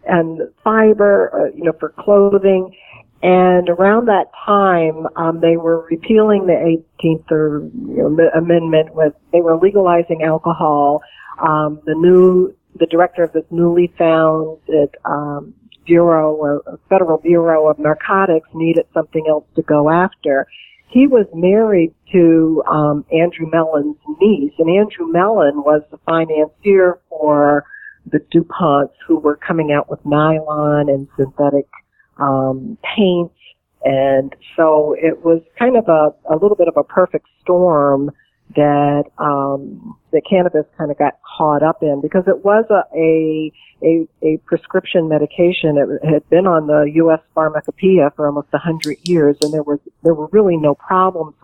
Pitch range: 150-180 Hz